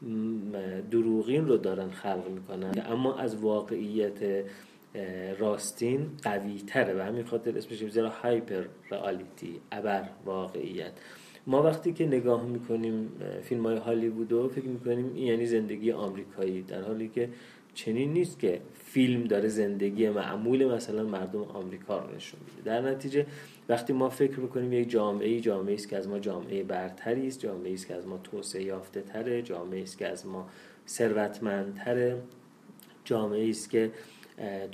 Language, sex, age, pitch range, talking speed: Persian, male, 30-49, 100-125 Hz, 140 wpm